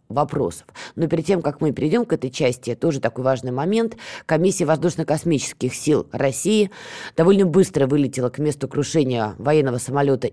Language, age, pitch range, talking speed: Russian, 20-39, 135-180 Hz, 145 wpm